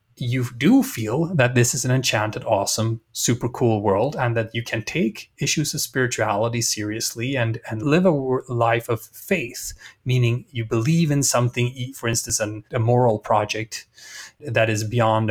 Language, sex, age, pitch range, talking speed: English, male, 30-49, 110-140 Hz, 170 wpm